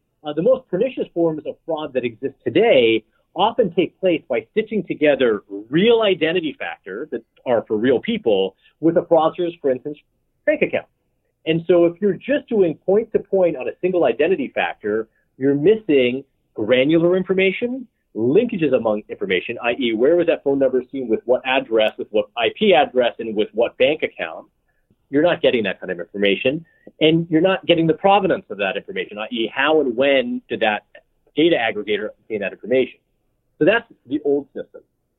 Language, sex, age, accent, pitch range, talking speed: English, male, 30-49, American, 135-210 Hz, 175 wpm